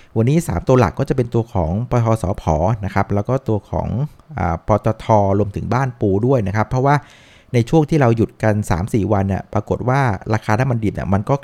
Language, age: Thai, 60-79